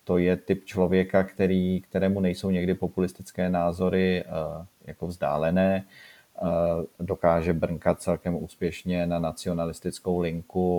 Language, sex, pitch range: Czech, male, 85-95 Hz